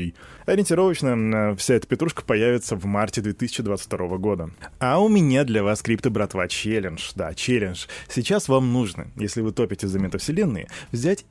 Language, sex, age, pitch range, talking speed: Russian, male, 20-39, 100-145 Hz, 145 wpm